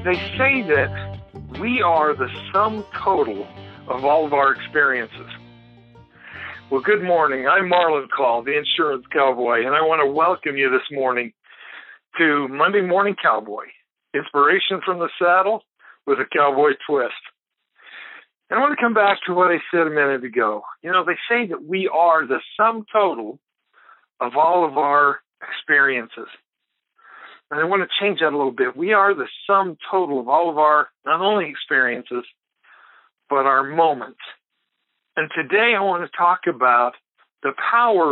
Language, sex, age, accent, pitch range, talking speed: English, male, 60-79, American, 135-180 Hz, 160 wpm